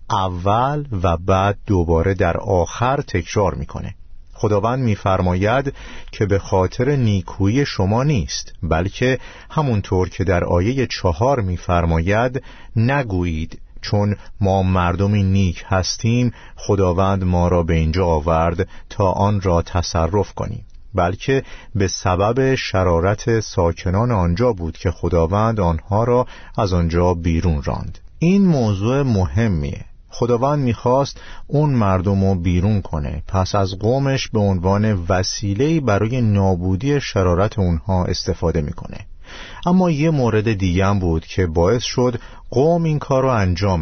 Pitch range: 90-120 Hz